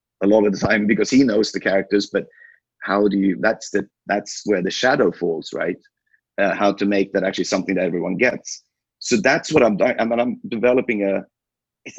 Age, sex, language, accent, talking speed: 30-49, male, English, Swedish, 215 wpm